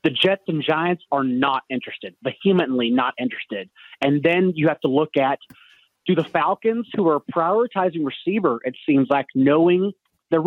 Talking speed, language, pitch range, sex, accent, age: 165 wpm, English, 130-170 Hz, male, American, 30-49